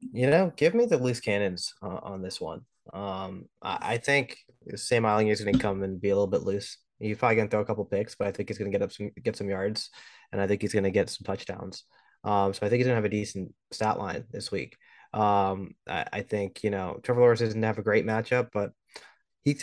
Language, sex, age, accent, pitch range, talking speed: English, male, 20-39, American, 100-115 Hz, 260 wpm